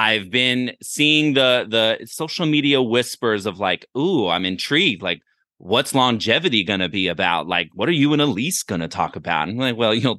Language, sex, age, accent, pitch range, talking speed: English, male, 30-49, American, 105-130 Hz, 205 wpm